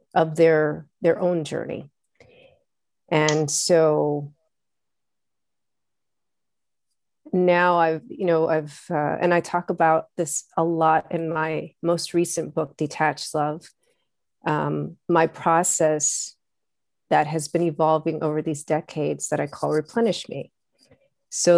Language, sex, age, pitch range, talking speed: English, female, 40-59, 155-175 Hz, 120 wpm